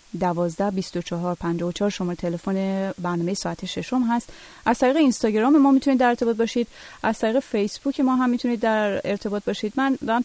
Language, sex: Persian, female